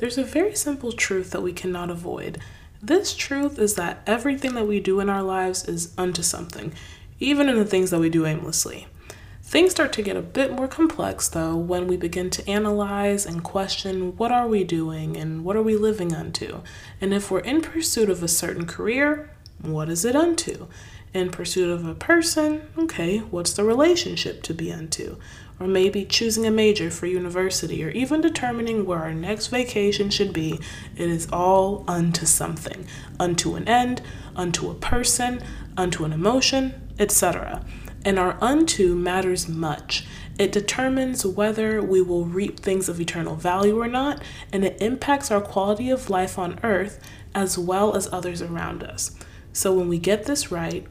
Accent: American